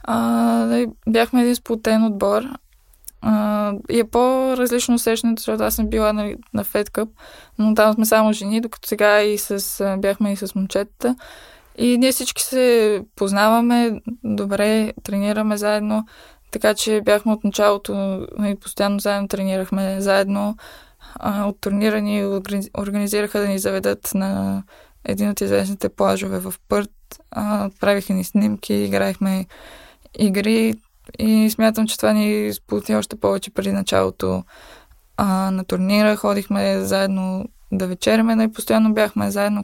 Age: 20-39